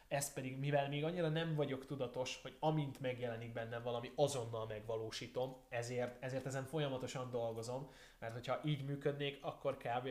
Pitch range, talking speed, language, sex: 120-145 Hz, 155 wpm, Hungarian, male